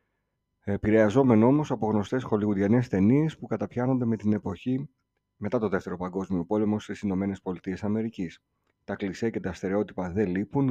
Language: Greek